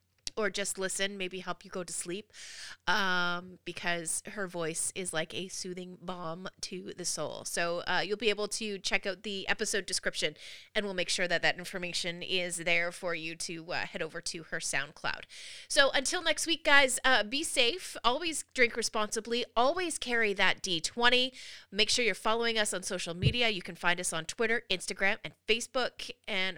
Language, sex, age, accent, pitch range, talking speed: English, female, 30-49, American, 175-230 Hz, 185 wpm